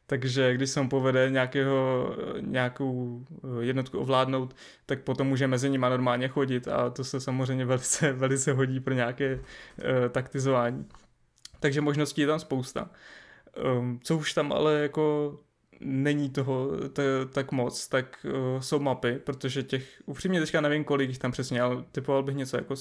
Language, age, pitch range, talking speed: Czech, 20-39, 130-145 Hz, 155 wpm